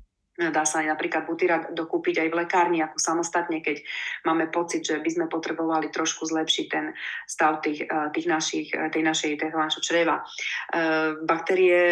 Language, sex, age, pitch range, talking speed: Slovak, female, 30-49, 160-185 Hz, 130 wpm